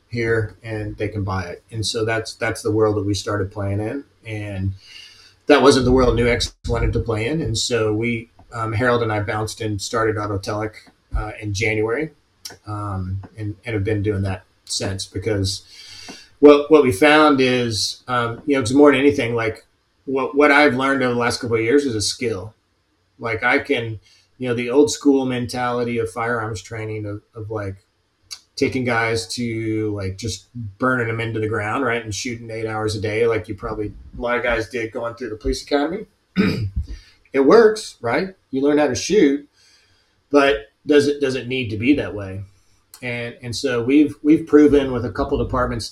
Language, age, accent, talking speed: English, 30-49, American, 195 wpm